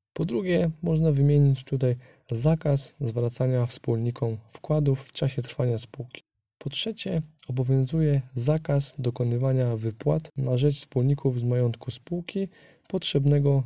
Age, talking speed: 20-39, 115 wpm